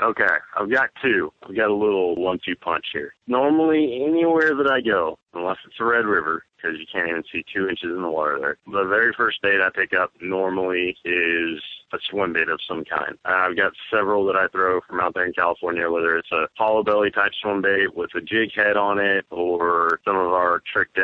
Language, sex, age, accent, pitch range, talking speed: English, male, 30-49, American, 90-115 Hz, 220 wpm